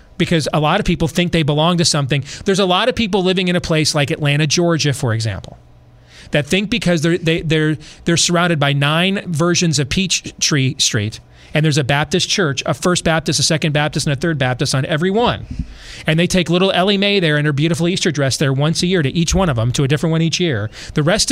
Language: English